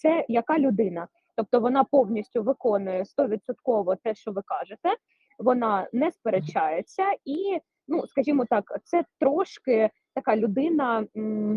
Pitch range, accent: 225-310 Hz, native